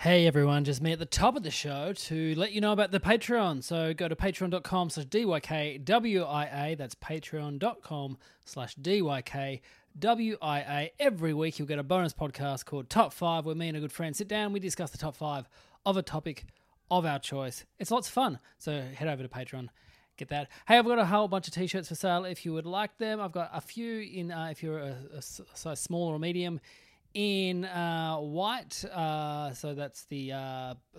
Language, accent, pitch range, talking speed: English, Australian, 145-185 Hz, 200 wpm